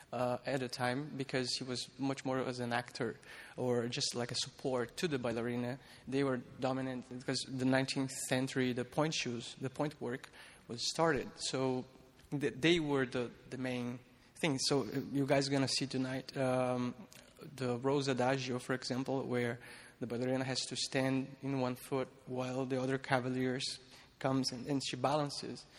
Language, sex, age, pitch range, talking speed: English, male, 20-39, 125-145 Hz, 170 wpm